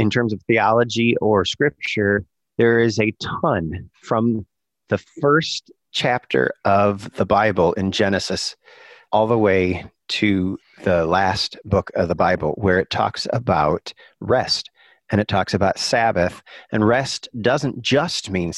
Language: English